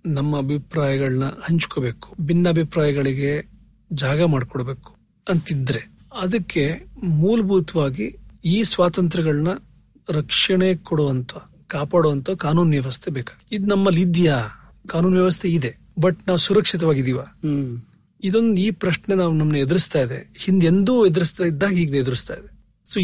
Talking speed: 105 wpm